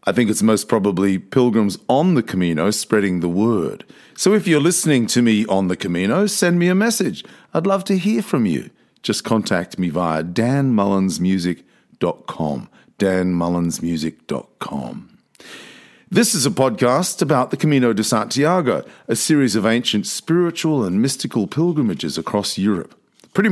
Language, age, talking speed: English, 50-69, 145 wpm